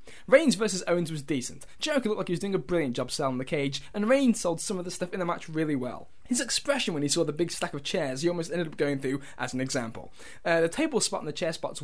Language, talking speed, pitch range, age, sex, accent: English, 285 wpm, 145-215 Hz, 10-29, male, British